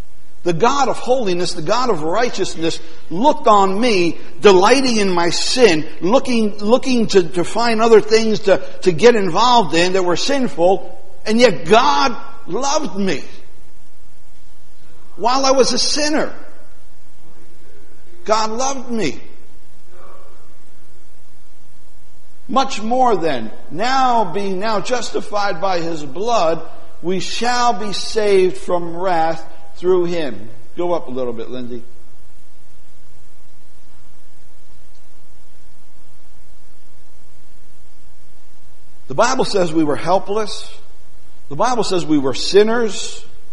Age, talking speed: 60-79, 110 wpm